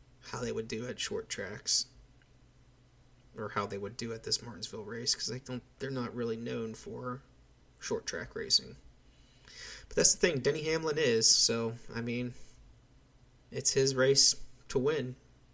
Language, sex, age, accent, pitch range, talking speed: English, male, 30-49, American, 115-135 Hz, 160 wpm